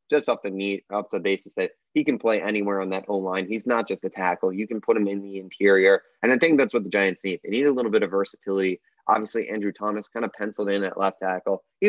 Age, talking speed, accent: 20-39, 275 wpm, American